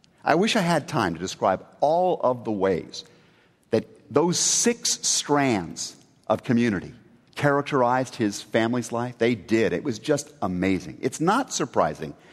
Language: English